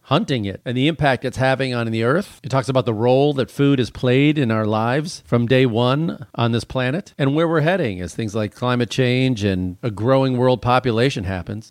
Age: 40-59